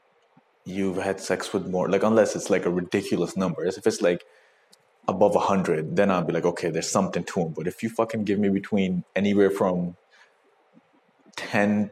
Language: English